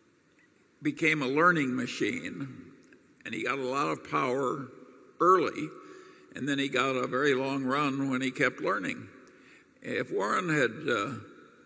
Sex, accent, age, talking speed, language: male, American, 50-69, 140 wpm, English